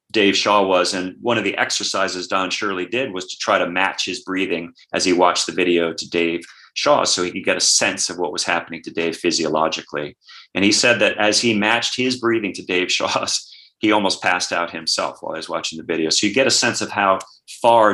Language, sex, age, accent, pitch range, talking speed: English, male, 40-59, American, 90-110 Hz, 235 wpm